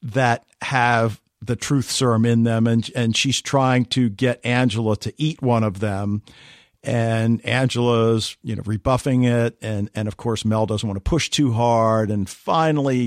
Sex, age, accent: male, 50-69, American